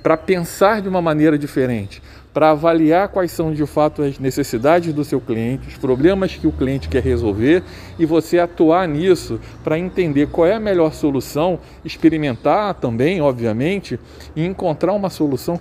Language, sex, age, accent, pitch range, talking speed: Portuguese, male, 40-59, Brazilian, 135-175 Hz, 160 wpm